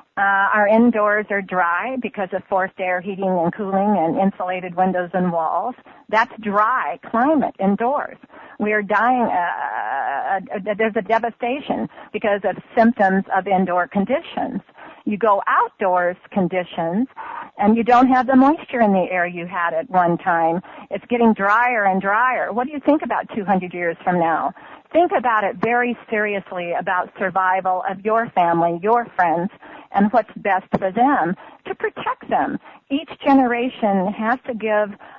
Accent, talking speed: American, 155 wpm